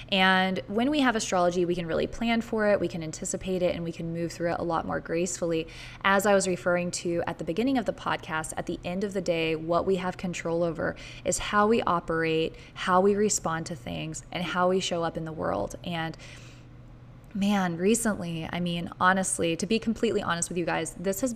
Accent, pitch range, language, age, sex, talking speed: American, 170-210 Hz, English, 20-39, female, 220 wpm